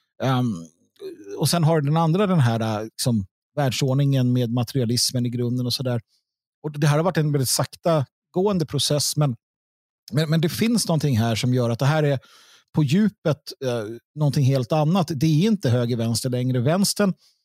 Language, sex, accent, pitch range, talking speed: Swedish, male, native, 125-165 Hz, 175 wpm